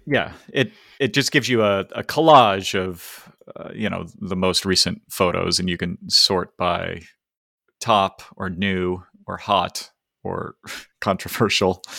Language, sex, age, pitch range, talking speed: English, male, 30-49, 90-130 Hz, 145 wpm